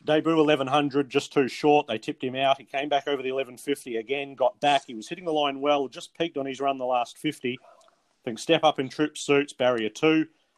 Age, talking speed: 30-49, 235 wpm